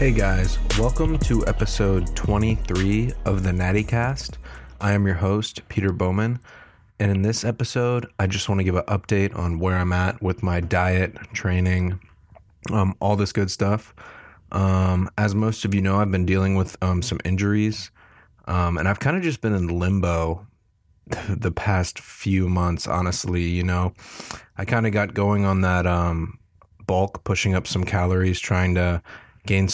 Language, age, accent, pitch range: English, 30-49, American, 90-105 Hz